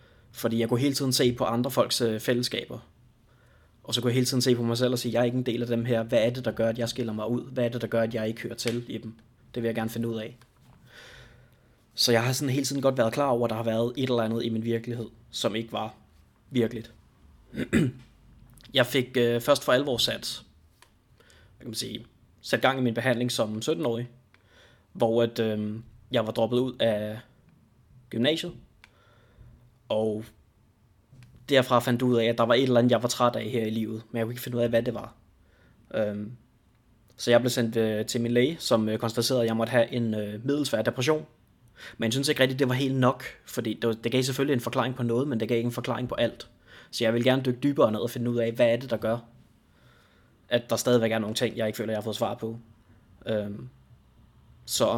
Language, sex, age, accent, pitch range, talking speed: English, male, 20-39, Danish, 115-125 Hz, 230 wpm